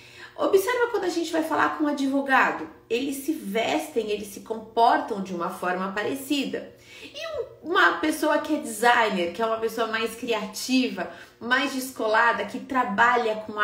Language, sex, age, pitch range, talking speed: Portuguese, female, 30-49, 190-275 Hz, 160 wpm